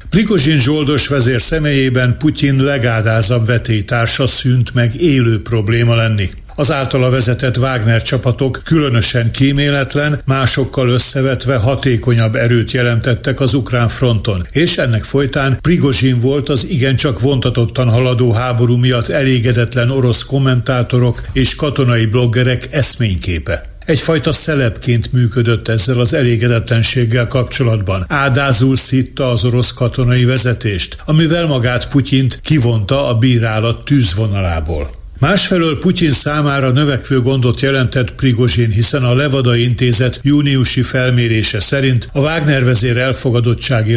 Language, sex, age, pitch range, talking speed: Hungarian, male, 60-79, 115-135 Hz, 110 wpm